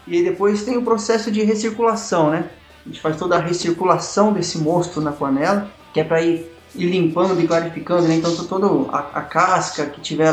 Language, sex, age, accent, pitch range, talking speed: Portuguese, male, 20-39, Brazilian, 160-200 Hz, 190 wpm